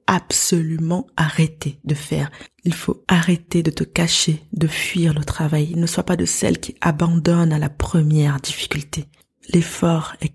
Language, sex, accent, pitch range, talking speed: French, female, French, 150-175 Hz, 155 wpm